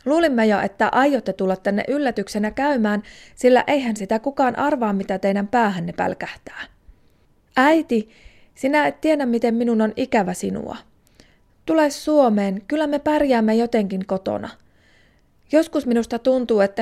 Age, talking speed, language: 30-49, 130 wpm, Finnish